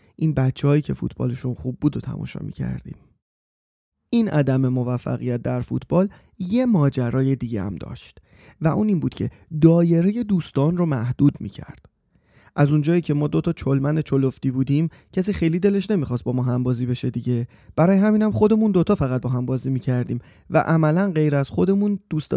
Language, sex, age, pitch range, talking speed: Persian, male, 30-49, 125-160 Hz, 170 wpm